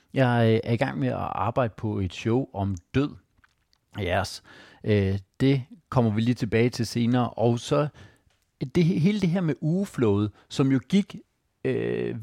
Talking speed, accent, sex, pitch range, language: 165 wpm, native, male, 110-145 Hz, Danish